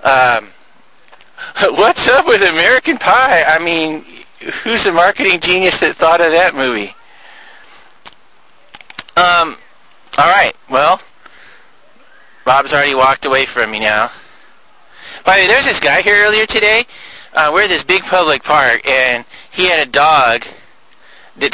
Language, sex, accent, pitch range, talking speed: English, male, American, 130-185 Hz, 150 wpm